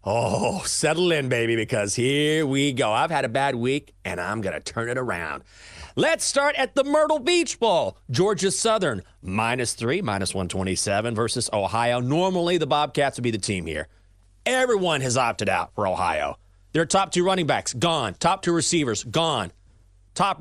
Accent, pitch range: American, 105-170 Hz